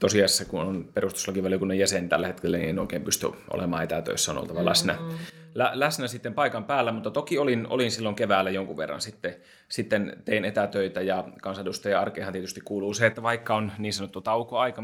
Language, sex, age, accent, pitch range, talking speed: Finnish, male, 30-49, native, 95-115 Hz, 175 wpm